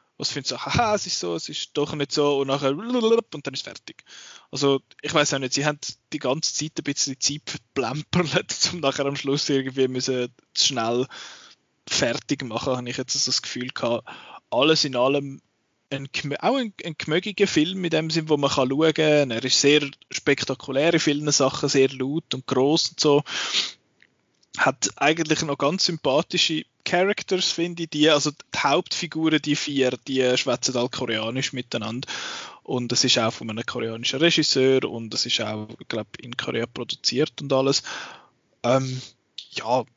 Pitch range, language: 125-155 Hz, German